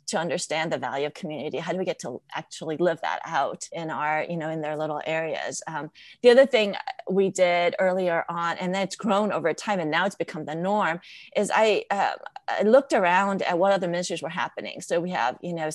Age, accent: 30-49, American